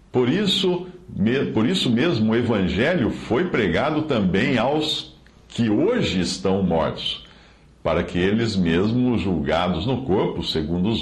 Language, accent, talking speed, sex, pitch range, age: Portuguese, Brazilian, 125 wpm, male, 85-130 Hz, 60-79